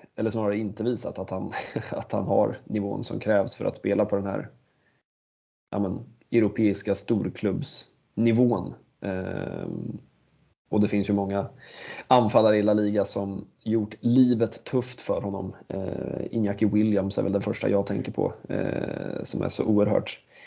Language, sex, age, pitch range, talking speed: Swedish, male, 20-39, 100-115 Hz, 140 wpm